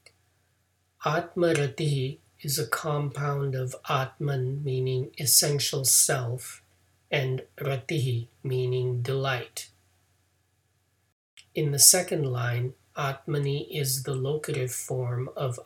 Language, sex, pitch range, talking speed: English, male, 105-145 Hz, 90 wpm